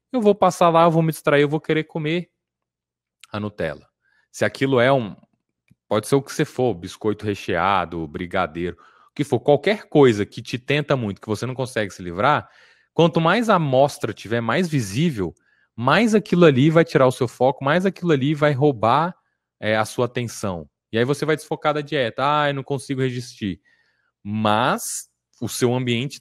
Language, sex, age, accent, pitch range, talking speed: Portuguese, male, 20-39, Brazilian, 105-150 Hz, 185 wpm